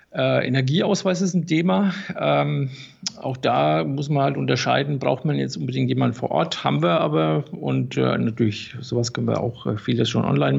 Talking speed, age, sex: 175 wpm, 50-69, male